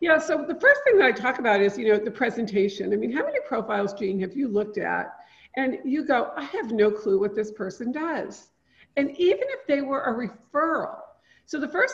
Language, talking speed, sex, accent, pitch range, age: English, 225 wpm, female, American, 215-285 Hz, 50-69